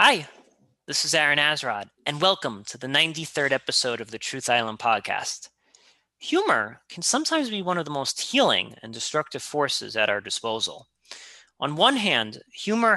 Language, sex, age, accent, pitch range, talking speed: English, male, 30-49, American, 130-180 Hz, 160 wpm